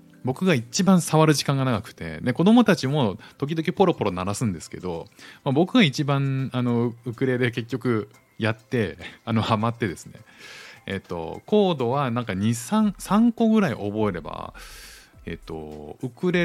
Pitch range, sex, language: 100-165 Hz, male, Japanese